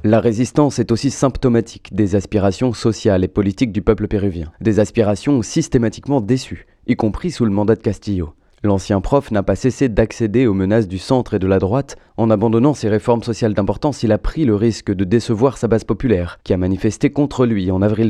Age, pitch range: 30-49, 100-120 Hz